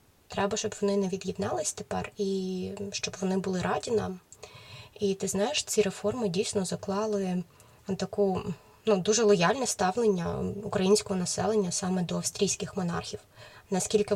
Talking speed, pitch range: 130 wpm, 180-205 Hz